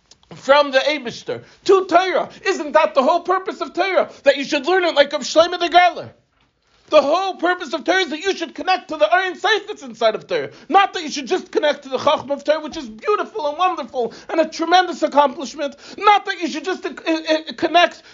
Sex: male